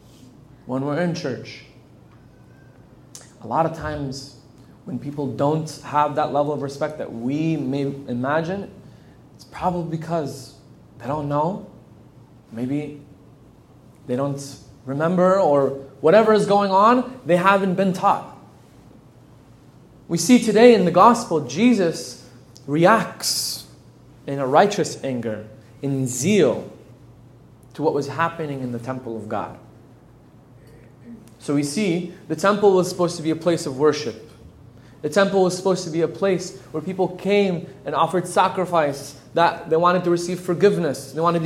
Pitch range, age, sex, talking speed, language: 135-185 Hz, 20-39, male, 140 wpm, English